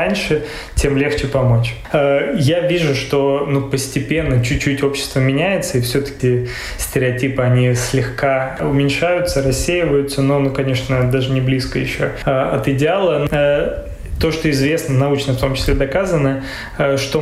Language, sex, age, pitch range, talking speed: Russian, male, 20-39, 135-155 Hz, 125 wpm